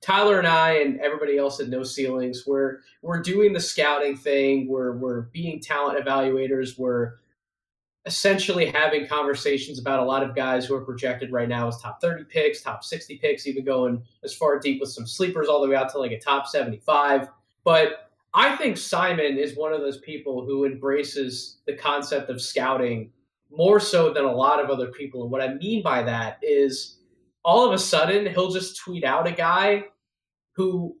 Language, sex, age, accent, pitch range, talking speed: English, male, 20-39, American, 135-180 Hz, 190 wpm